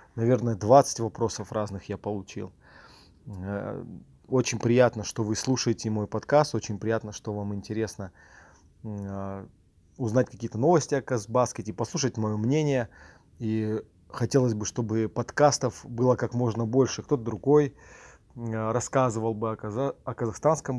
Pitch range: 105-130 Hz